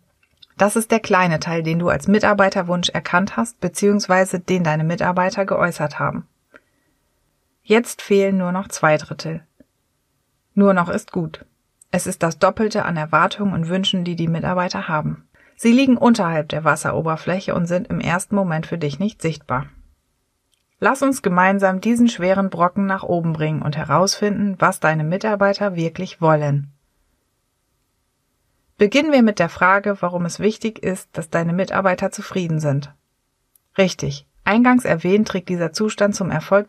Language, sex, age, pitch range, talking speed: German, female, 30-49, 160-200 Hz, 150 wpm